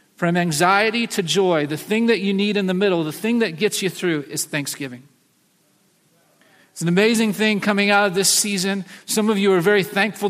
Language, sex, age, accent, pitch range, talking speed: English, male, 40-59, American, 180-225 Hz, 205 wpm